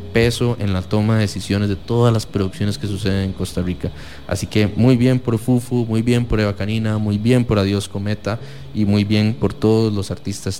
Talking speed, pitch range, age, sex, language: 215 wpm, 95-115 Hz, 20-39, male, English